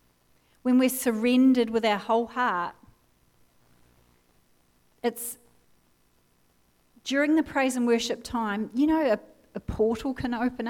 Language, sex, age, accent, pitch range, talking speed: English, female, 40-59, Australian, 185-235 Hz, 120 wpm